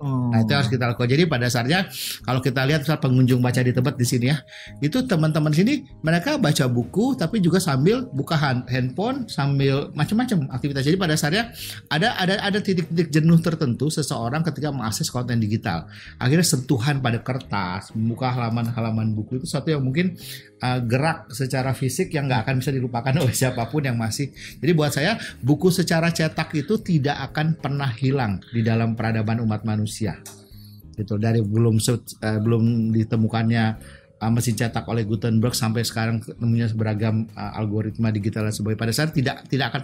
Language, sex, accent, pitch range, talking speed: Indonesian, male, native, 115-155 Hz, 165 wpm